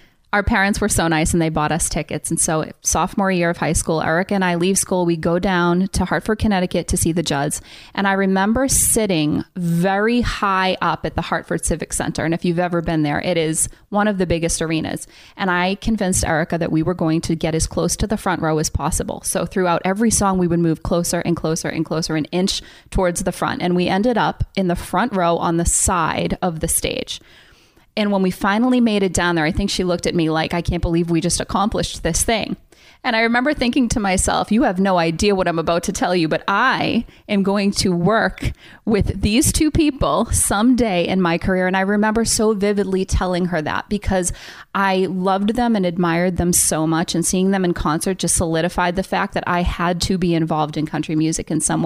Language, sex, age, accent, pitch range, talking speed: English, female, 20-39, American, 170-200 Hz, 225 wpm